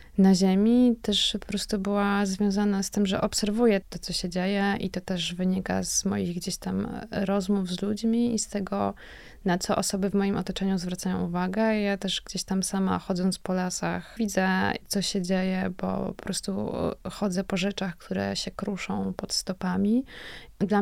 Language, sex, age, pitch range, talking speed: Polish, female, 20-39, 180-200 Hz, 175 wpm